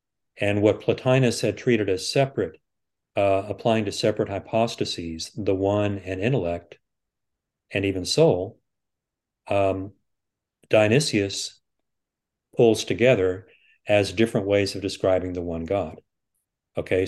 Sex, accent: male, American